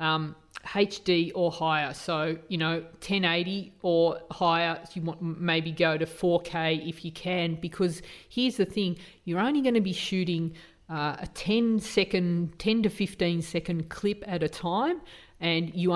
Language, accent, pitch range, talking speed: English, Australian, 165-195 Hz, 160 wpm